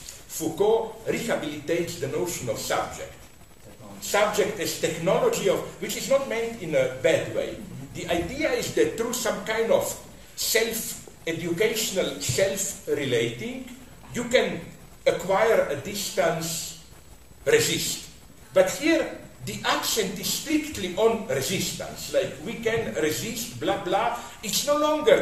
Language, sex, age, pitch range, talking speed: English, male, 50-69, 165-245 Hz, 120 wpm